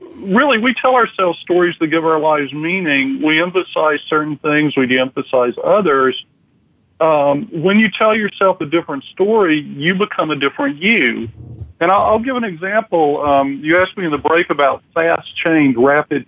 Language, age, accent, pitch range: English, 50-69, American, 135-170 Hz